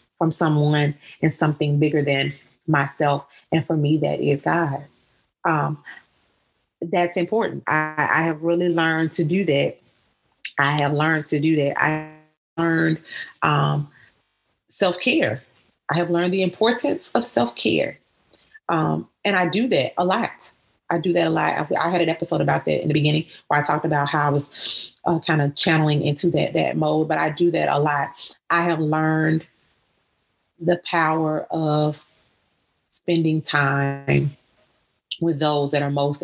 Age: 30-49